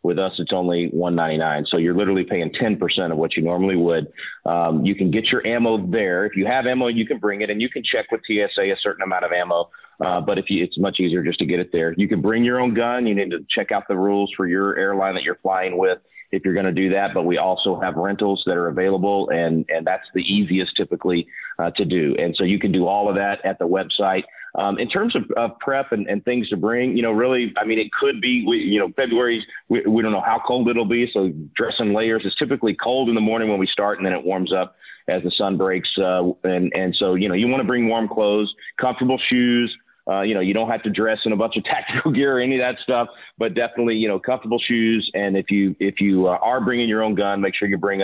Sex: male